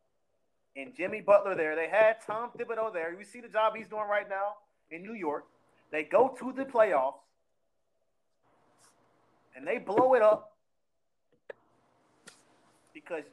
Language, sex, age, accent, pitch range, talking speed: English, male, 30-49, American, 170-230 Hz, 140 wpm